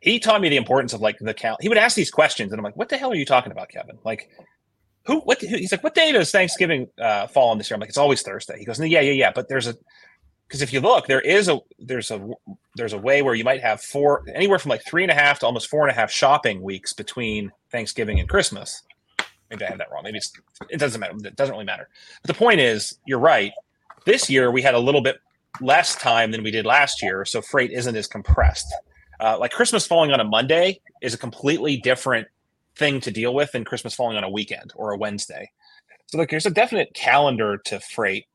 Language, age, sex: English, 30-49, male